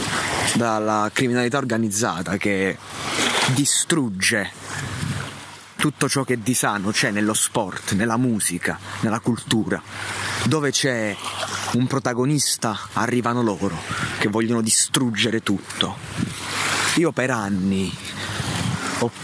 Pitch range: 105-130 Hz